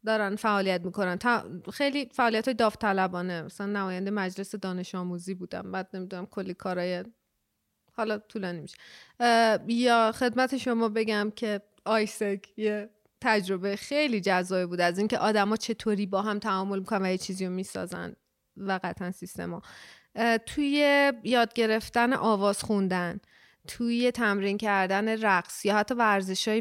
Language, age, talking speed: Persian, 30-49, 135 wpm